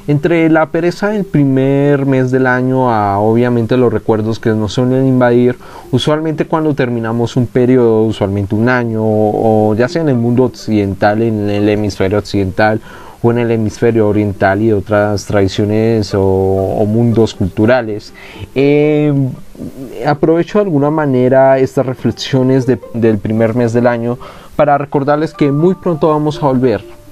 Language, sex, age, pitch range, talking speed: Spanish, male, 30-49, 115-145 Hz, 150 wpm